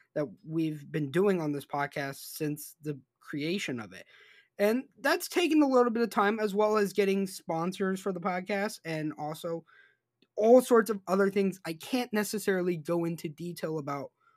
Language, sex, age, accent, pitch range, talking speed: English, male, 20-39, American, 155-215 Hz, 175 wpm